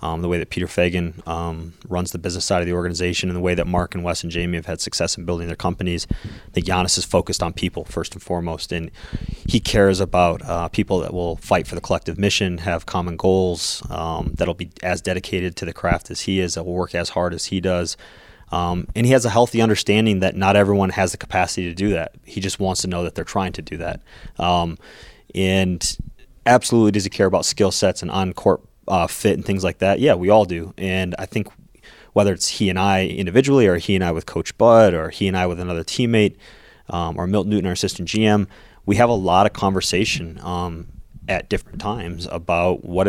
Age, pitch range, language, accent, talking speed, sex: 20-39, 85-95 Hz, English, American, 230 wpm, male